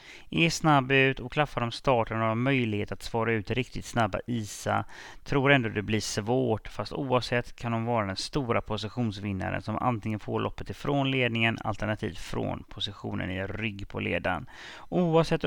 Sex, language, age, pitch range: male, English, 30-49, 105-130 Hz